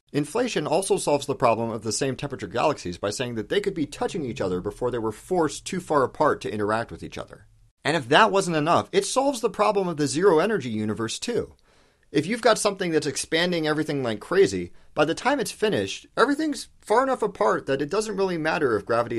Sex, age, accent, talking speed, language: male, 40-59, American, 220 wpm, English